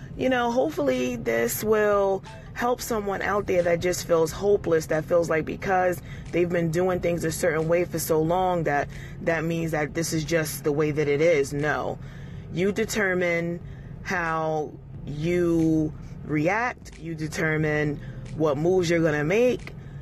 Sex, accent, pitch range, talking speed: female, American, 145-185 Hz, 160 wpm